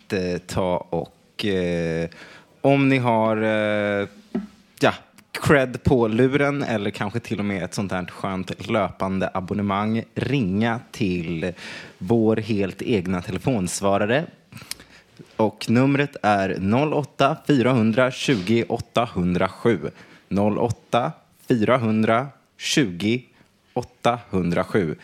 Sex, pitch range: male, 100-155 Hz